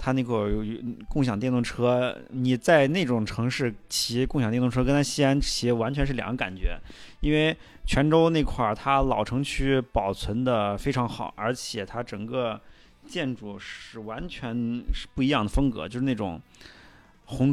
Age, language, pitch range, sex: 20-39, Chinese, 105-130 Hz, male